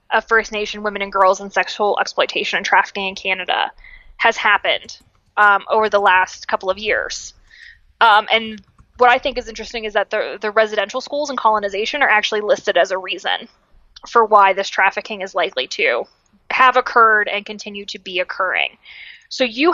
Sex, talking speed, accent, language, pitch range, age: female, 180 wpm, American, English, 205-255 Hz, 20-39